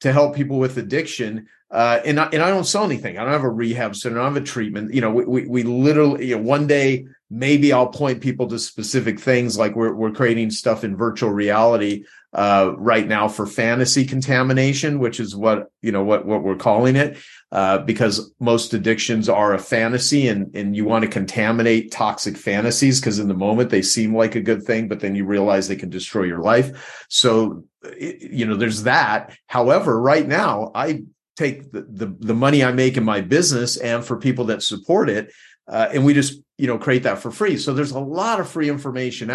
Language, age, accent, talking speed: English, 40-59, American, 215 wpm